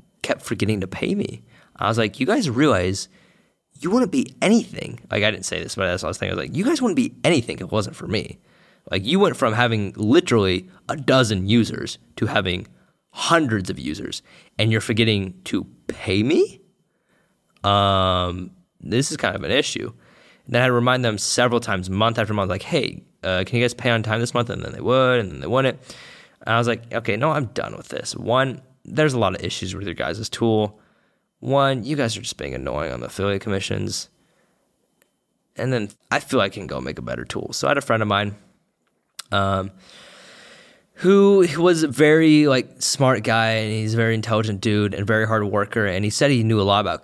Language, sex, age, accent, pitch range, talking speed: English, male, 20-39, American, 100-130 Hz, 220 wpm